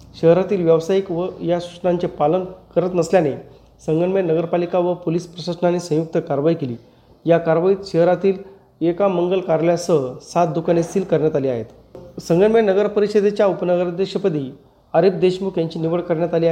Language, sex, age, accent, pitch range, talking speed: Marathi, male, 30-49, native, 160-190 Hz, 140 wpm